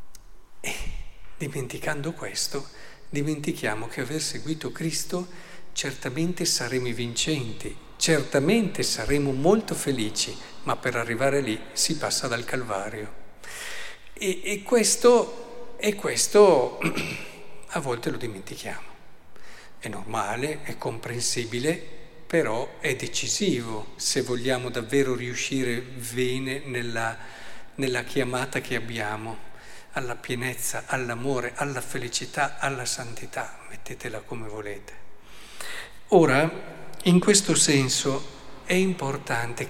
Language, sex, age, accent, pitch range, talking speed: Italian, male, 50-69, native, 120-160 Hz, 95 wpm